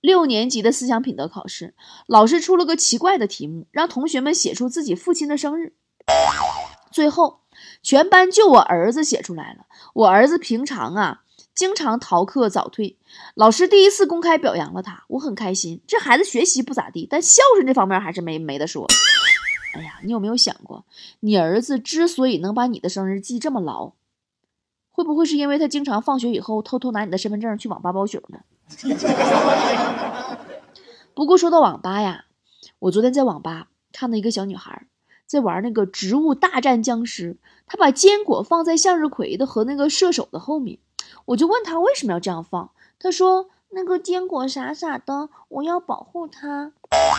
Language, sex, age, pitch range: Chinese, female, 20-39, 210-330 Hz